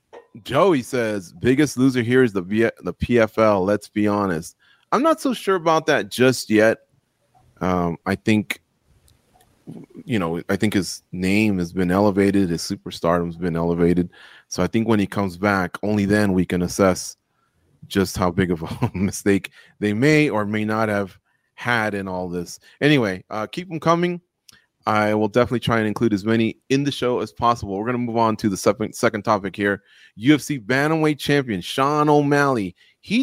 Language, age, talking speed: English, 30-49, 180 wpm